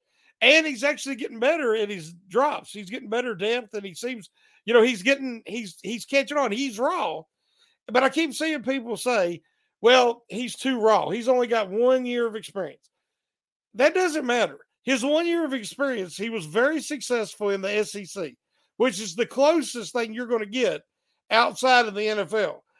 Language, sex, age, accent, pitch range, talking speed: English, male, 50-69, American, 215-275 Hz, 185 wpm